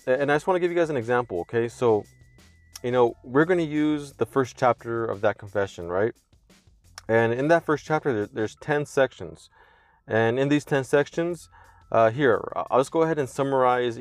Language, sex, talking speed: English, male, 195 wpm